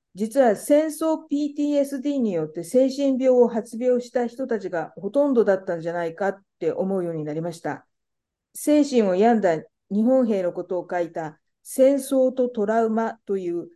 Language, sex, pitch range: Japanese, female, 175-260 Hz